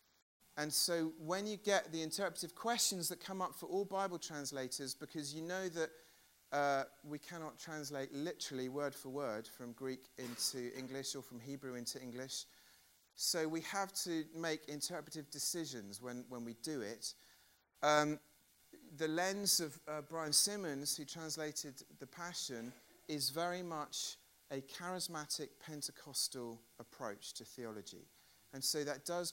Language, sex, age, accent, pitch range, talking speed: English, male, 40-59, British, 125-170 Hz, 145 wpm